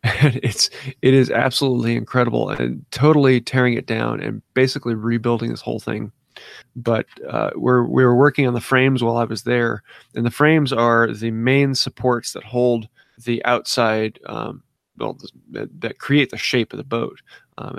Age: 30-49